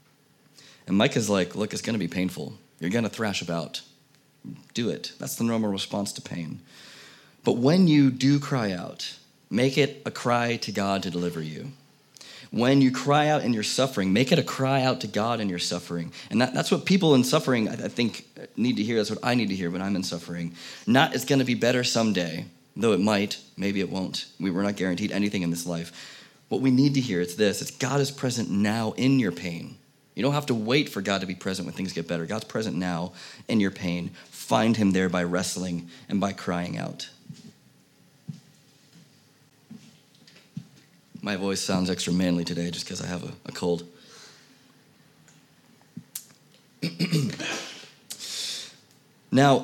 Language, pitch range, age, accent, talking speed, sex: English, 90-130 Hz, 30-49, American, 185 wpm, male